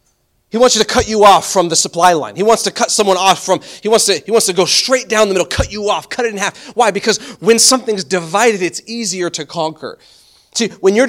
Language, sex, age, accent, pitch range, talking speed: English, male, 30-49, American, 160-200 Hz, 260 wpm